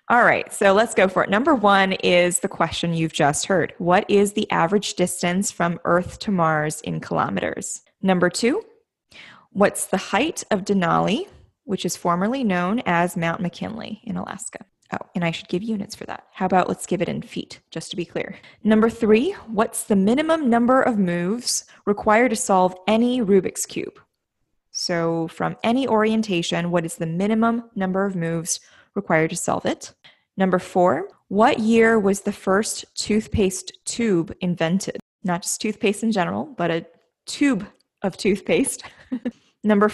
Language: English